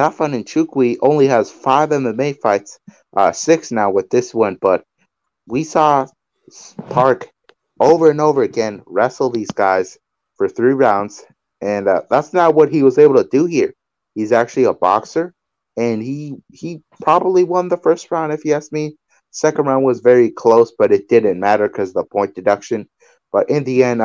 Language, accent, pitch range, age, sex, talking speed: English, American, 120-180 Hz, 30-49, male, 180 wpm